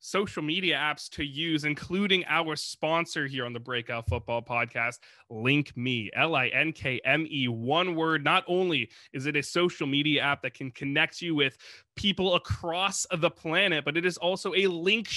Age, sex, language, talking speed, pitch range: 20-39, male, English, 165 wpm, 135-185 Hz